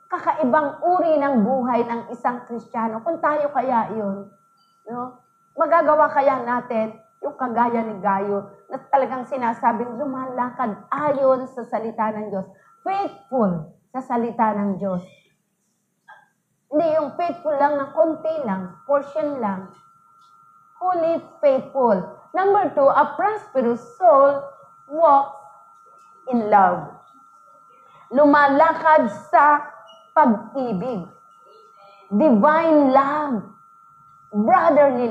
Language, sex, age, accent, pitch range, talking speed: English, female, 30-49, Filipino, 200-310 Hz, 100 wpm